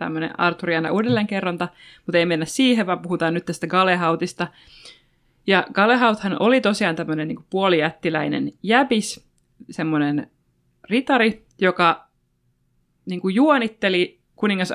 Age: 20-39